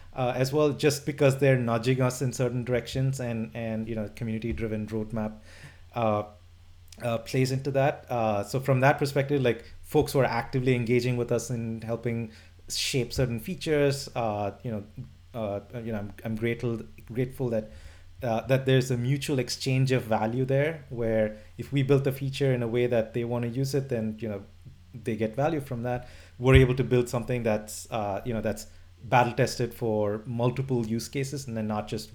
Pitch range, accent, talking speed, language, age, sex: 105-130 Hz, Indian, 195 wpm, English, 30-49, male